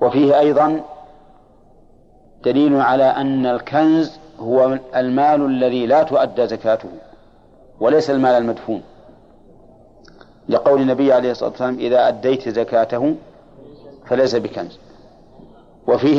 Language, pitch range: Arabic, 120-145 Hz